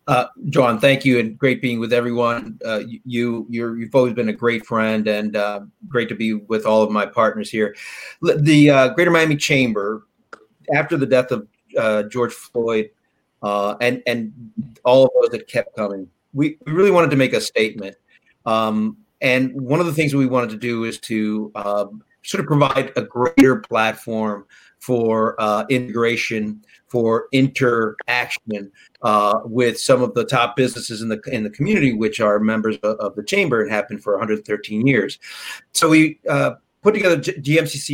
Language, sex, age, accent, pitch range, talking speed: English, male, 40-59, American, 110-140 Hz, 180 wpm